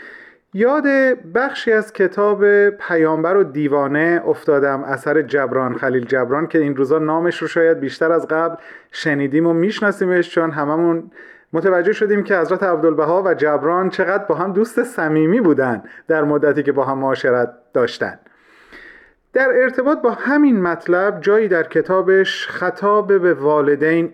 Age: 40-59